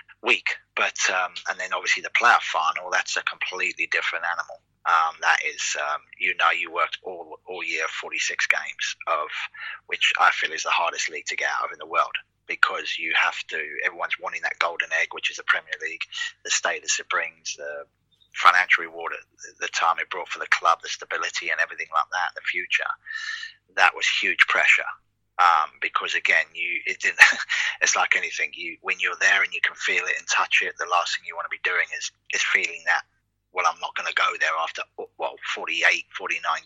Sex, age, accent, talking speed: male, 20-39, British, 210 wpm